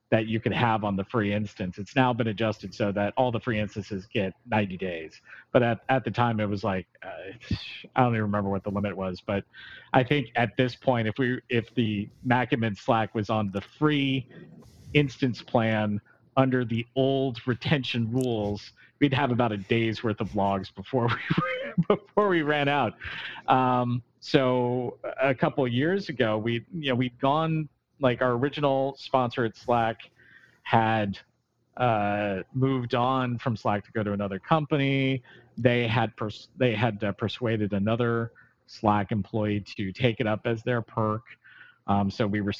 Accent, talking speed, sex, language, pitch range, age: American, 180 wpm, male, English, 105-130 Hz, 40-59